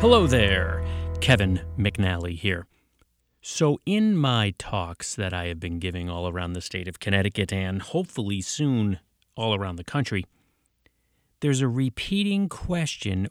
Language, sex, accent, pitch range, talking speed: English, male, American, 85-120 Hz, 140 wpm